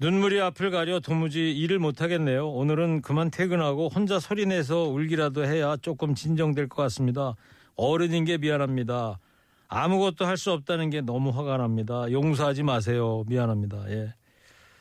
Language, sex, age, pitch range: Korean, male, 40-59, 120-160 Hz